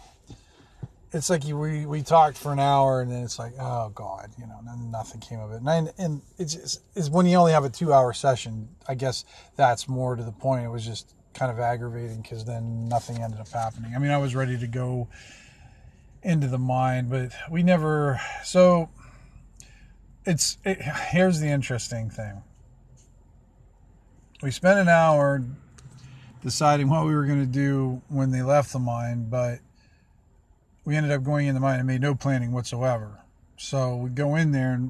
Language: English